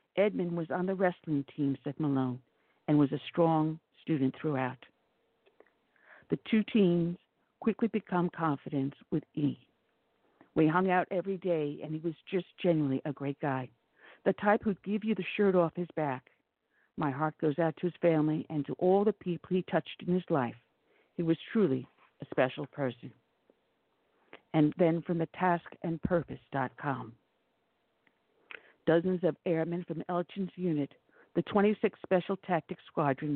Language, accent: English, American